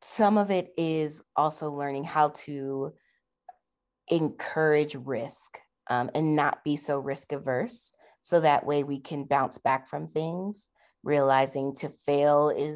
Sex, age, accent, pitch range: female, 30-49, American, 135-165 Hz